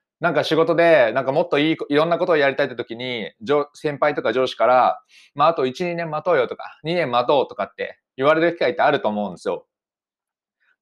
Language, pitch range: Japanese, 145-220 Hz